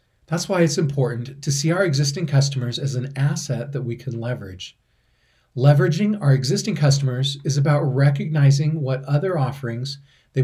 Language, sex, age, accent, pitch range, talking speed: English, male, 40-59, American, 125-145 Hz, 155 wpm